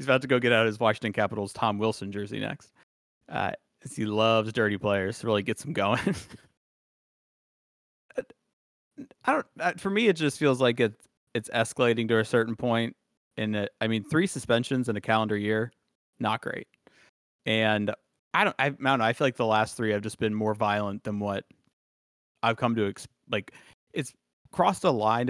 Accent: American